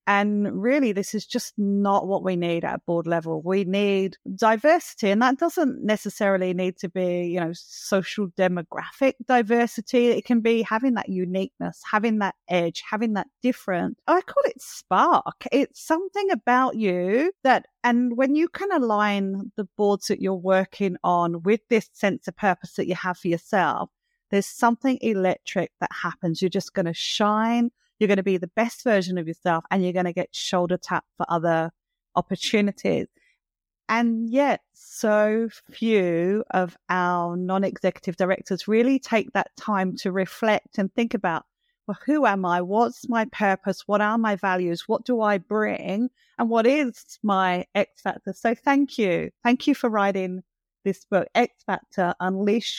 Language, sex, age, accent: English, female, 30-49, British